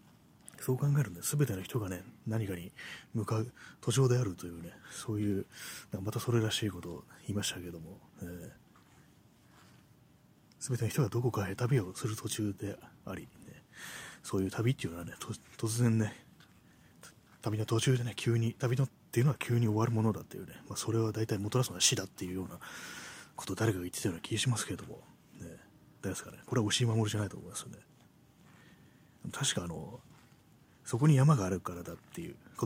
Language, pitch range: Japanese, 95-125 Hz